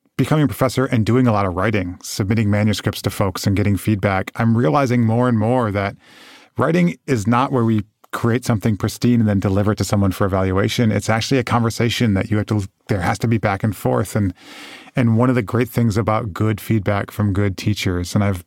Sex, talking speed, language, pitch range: male, 220 wpm, English, 100-120 Hz